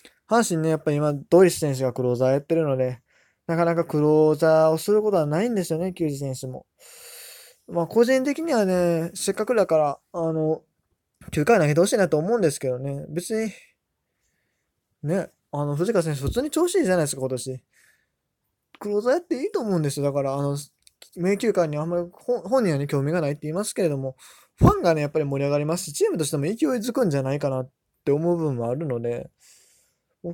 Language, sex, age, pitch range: Japanese, male, 20-39, 135-175 Hz